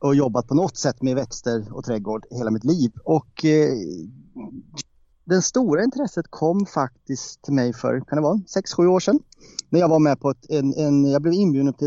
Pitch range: 125-165 Hz